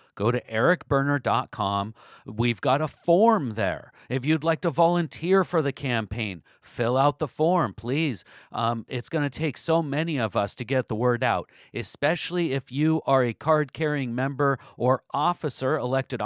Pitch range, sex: 120-150 Hz, male